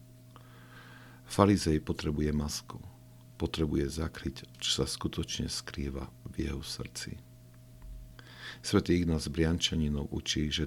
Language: Slovak